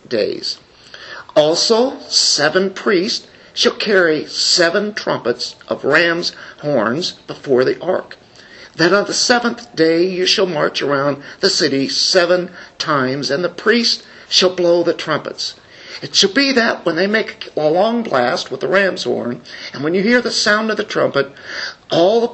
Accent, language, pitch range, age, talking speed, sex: American, English, 160-215 Hz, 50-69, 160 wpm, male